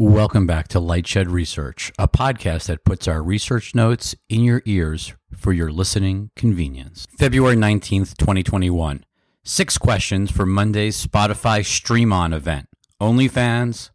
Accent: American